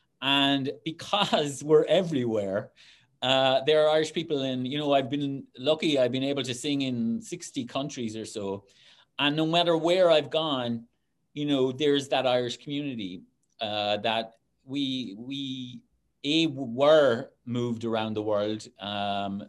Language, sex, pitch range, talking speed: English, male, 115-145 Hz, 150 wpm